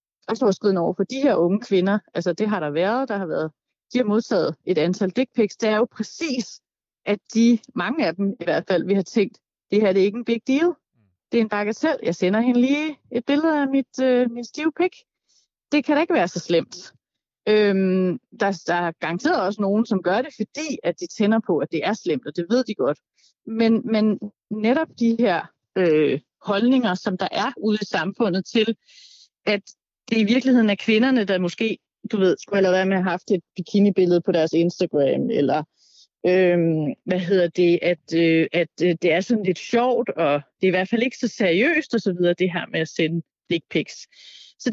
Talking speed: 215 wpm